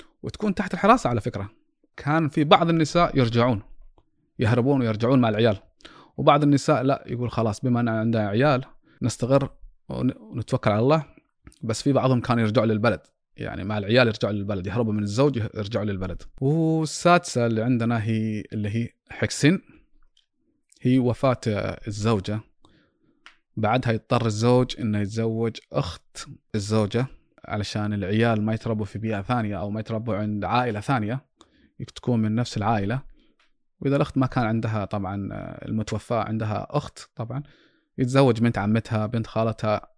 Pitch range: 105-135 Hz